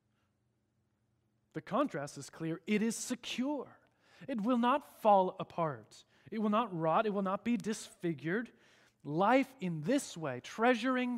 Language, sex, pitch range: English, male, 115-190 Hz